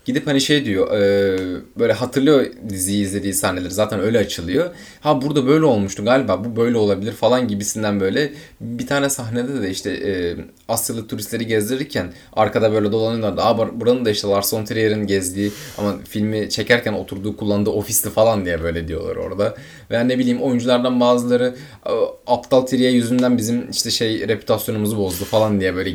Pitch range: 100-130 Hz